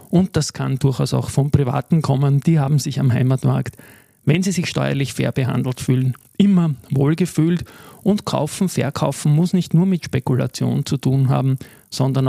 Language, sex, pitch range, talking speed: German, male, 130-155 Hz, 165 wpm